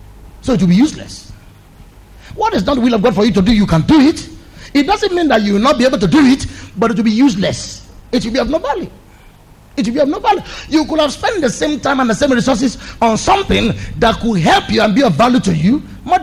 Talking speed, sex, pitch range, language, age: 270 wpm, male, 185-265 Hz, English, 50-69